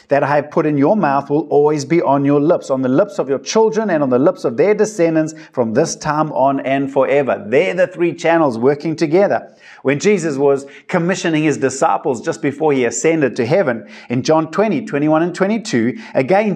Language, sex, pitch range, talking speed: English, male, 140-185 Hz, 205 wpm